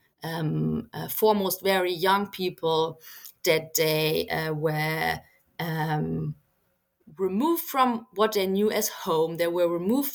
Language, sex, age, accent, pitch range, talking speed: English, female, 20-39, German, 160-210 Hz, 125 wpm